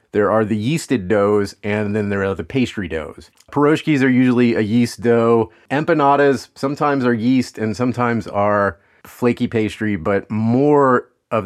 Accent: American